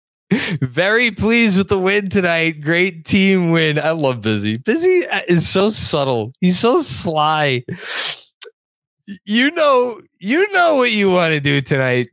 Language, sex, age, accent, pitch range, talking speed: English, male, 20-39, American, 115-170 Hz, 145 wpm